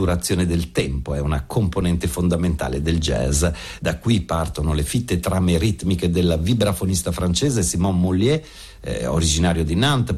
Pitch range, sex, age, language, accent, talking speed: 80-100 Hz, male, 60-79, Italian, native, 145 wpm